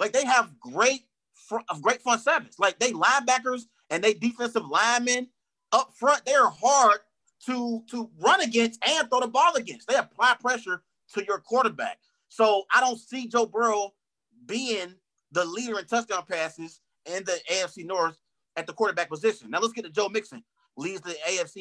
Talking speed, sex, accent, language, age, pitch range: 175 wpm, male, American, English, 30-49, 185-235 Hz